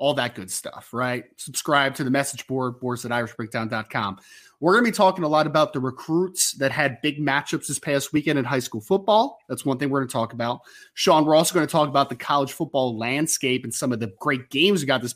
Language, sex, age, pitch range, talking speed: English, male, 30-49, 125-165 Hz, 245 wpm